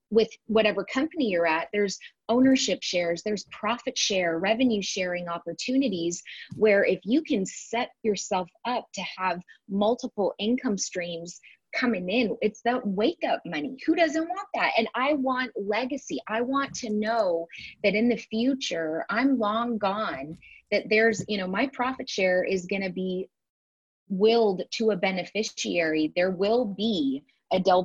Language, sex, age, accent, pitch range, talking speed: English, female, 30-49, American, 180-235 Hz, 155 wpm